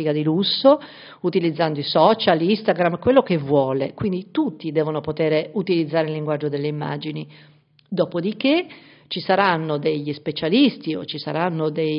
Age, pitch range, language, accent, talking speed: 50-69, 160-215 Hz, Italian, native, 130 wpm